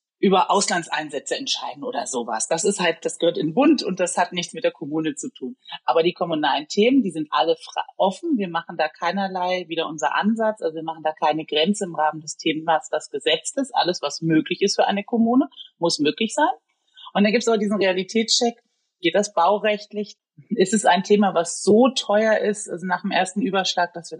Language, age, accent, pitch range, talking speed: German, 30-49, German, 165-230 Hz, 210 wpm